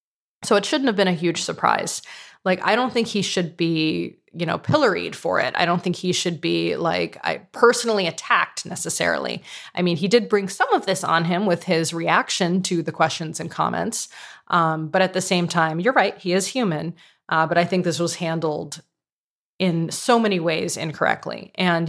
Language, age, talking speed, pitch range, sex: English, 20-39, 195 wpm, 160-185 Hz, female